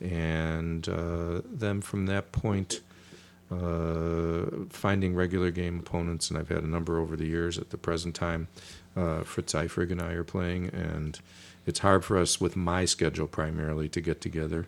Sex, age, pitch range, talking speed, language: male, 50-69, 80-90 Hz, 170 wpm, English